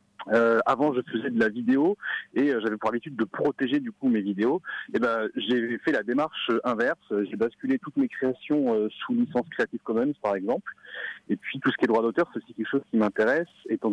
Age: 30-49